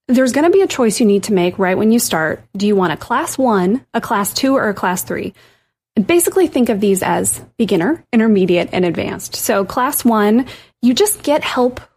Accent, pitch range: American, 185-250 Hz